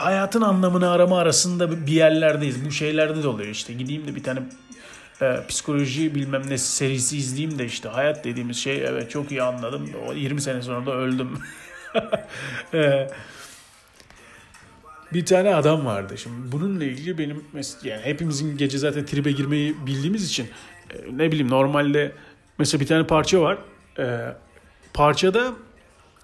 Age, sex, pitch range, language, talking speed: 40-59, male, 135-175 Hz, Turkish, 150 wpm